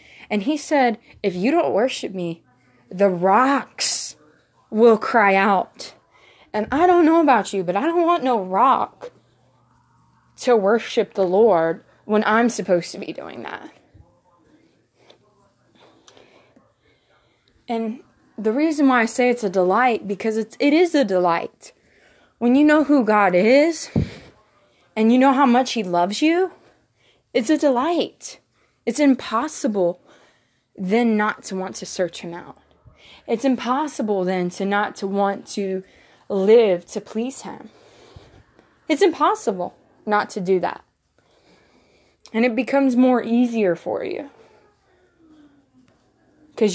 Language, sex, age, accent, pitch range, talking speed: English, female, 20-39, American, 195-260 Hz, 130 wpm